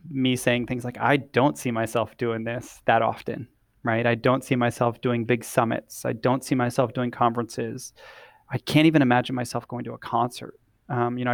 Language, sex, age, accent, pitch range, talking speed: English, male, 20-39, American, 115-125 Hz, 200 wpm